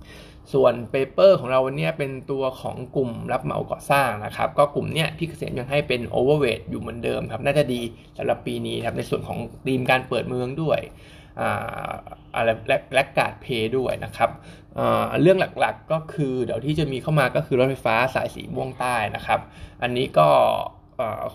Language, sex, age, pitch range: Thai, male, 20-39, 115-145 Hz